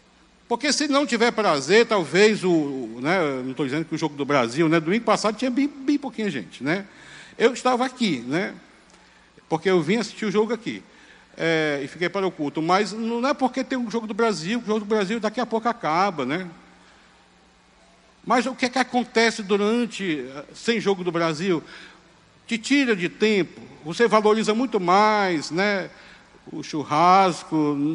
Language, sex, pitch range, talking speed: Portuguese, male, 160-230 Hz, 175 wpm